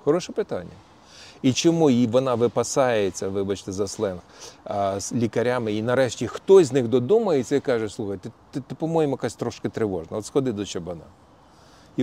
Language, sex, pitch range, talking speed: Ukrainian, male, 105-155 Hz, 160 wpm